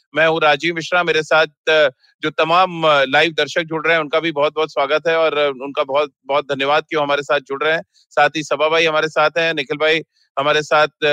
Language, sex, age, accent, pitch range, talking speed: Hindi, male, 30-49, native, 150-170 Hz, 225 wpm